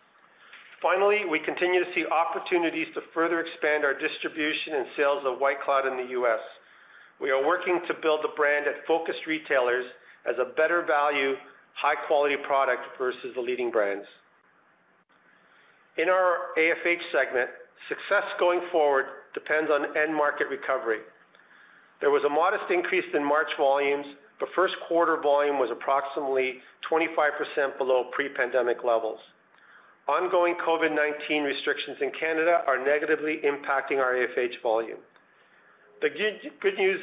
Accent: American